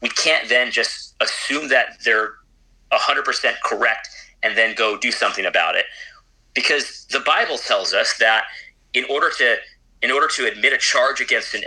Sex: male